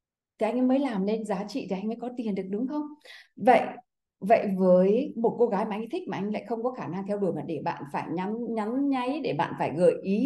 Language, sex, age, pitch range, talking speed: Vietnamese, female, 20-39, 175-230 Hz, 275 wpm